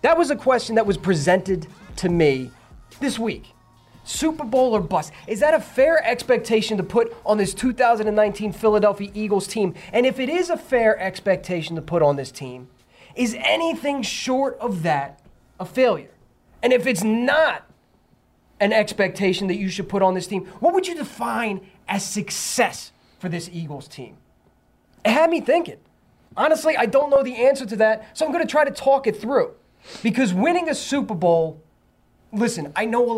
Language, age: English, 20-39